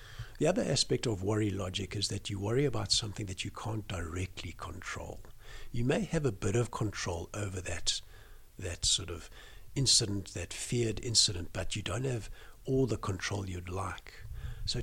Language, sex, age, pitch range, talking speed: English, male, 60-79, 95-115 Hz, 175 wpm